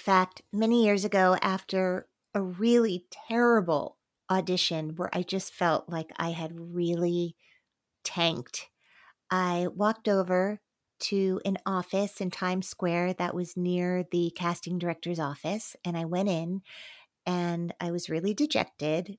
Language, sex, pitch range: English, female, 170-195 Hz